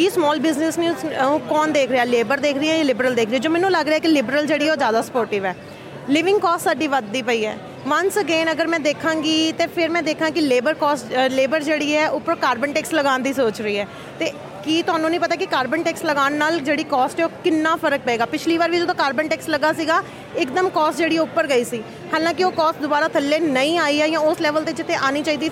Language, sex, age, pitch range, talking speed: Punjabi, female, 30-49, 280-330 Hz, 240 wpm